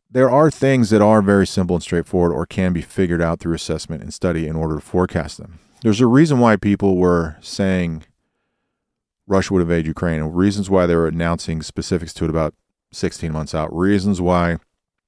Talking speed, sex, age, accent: 195 wpm, male, 40-59, American